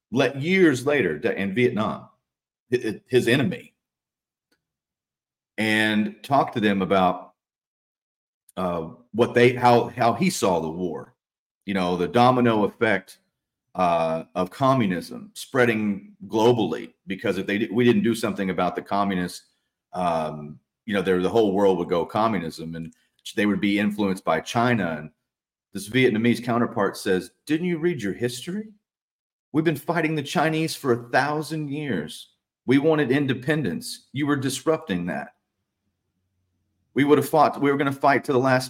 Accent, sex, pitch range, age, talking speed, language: American, male, 95-140 Hz, 40-59, 145 wpm, English